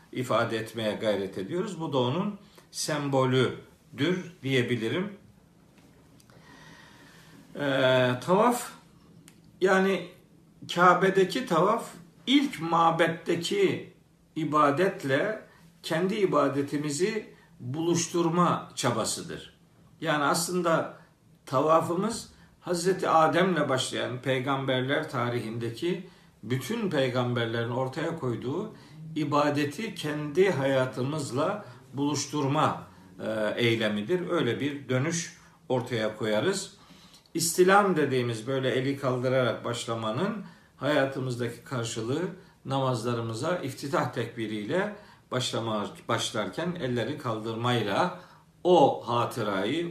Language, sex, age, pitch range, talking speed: Turkish, male, 50-69, 125-175 Hz, 70 wpm